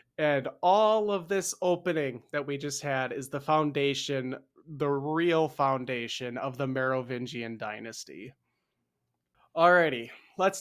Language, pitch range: English, 135-170 Hz